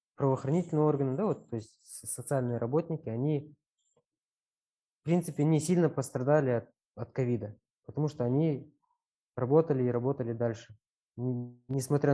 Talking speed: 120 wpm